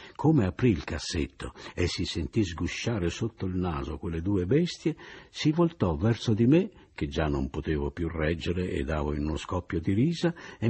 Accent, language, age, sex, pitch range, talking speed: native, Italian, 60-79, male, 90-125 Hz, 185 wpm